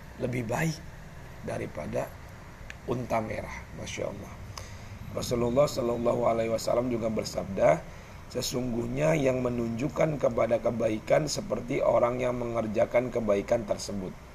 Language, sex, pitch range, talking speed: Indonesian, male, 100-130 Hz, 100 wpm